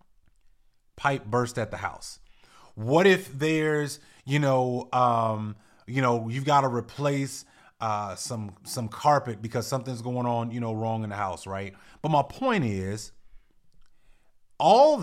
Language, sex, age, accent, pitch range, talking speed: English, male, 30-49, American, 120-185 Hz, 150 wpm